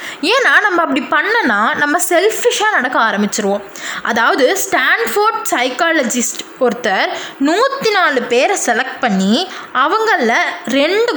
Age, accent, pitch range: 20-39, native, 245-355 Hz